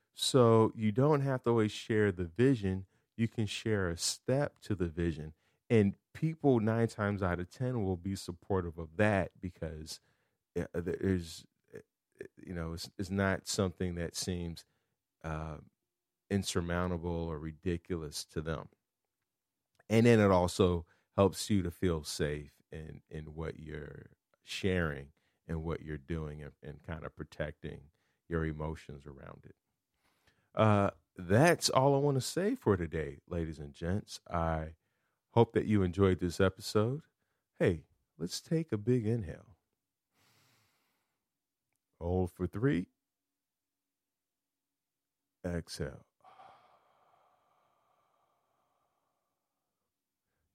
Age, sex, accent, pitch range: 40-59, male, American, 80-110 Hz